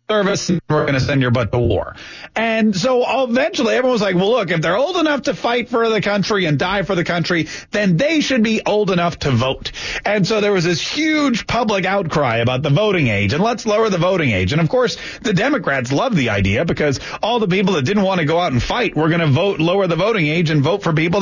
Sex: male